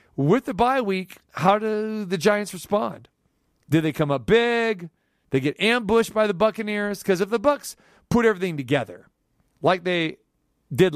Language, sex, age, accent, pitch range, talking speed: English, male, 40-59, American, 135-195 Hz, 165 wpm